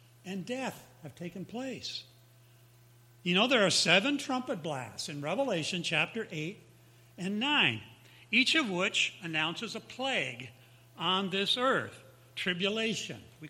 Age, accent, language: 60-79, American, English